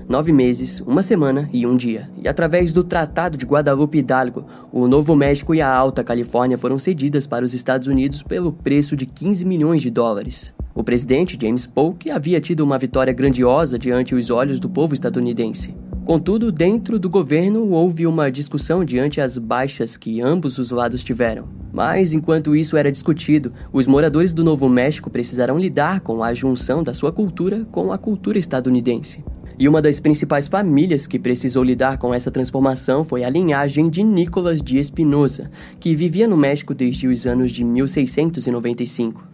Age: 20-39